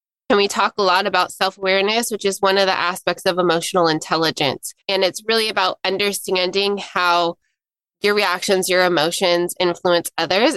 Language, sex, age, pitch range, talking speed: English, female, 20-39, 185-225 Hz, 160 wpm